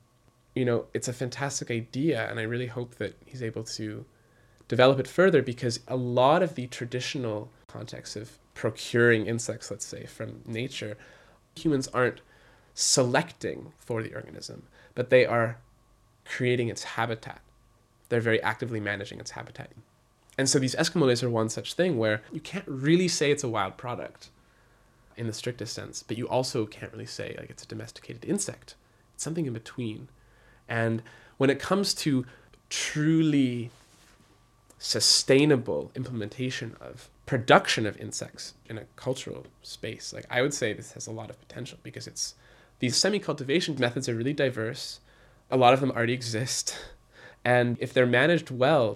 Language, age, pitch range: English, 20-39, 115-130 Hz